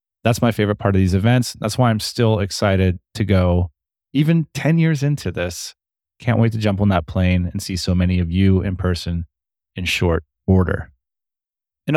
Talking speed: 190 wpm